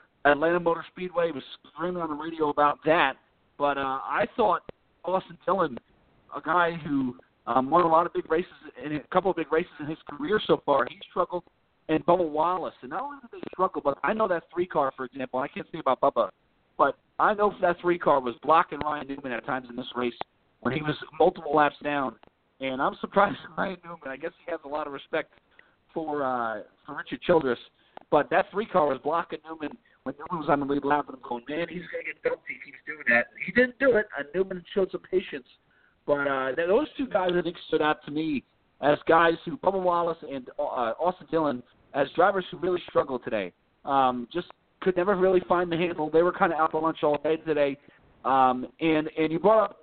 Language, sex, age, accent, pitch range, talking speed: English, male, 50-69, American, 145-180 Hz, 225 wpm